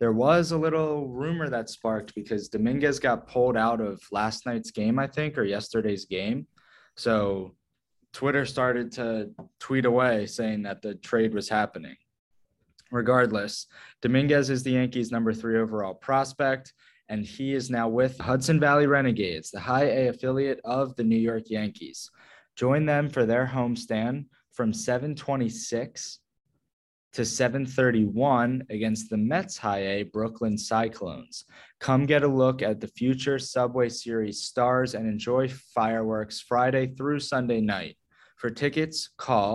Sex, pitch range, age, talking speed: male, 110-135 Hz, 20-39, 145 wpm